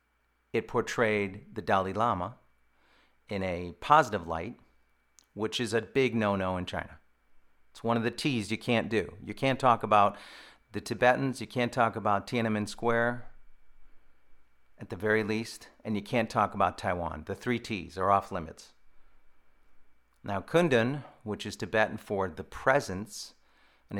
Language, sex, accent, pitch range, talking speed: English, male, American, 75-110 Hz, 155 wpm